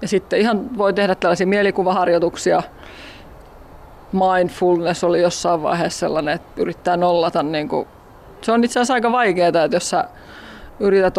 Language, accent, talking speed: Finnish, native, 140 wpm